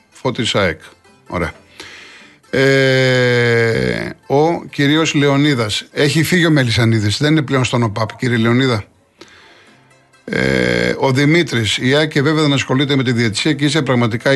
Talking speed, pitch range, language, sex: 120 wpm, 120-145 Hz, Greek, male